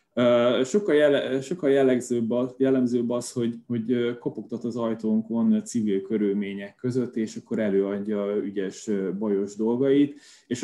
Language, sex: Hungarian, male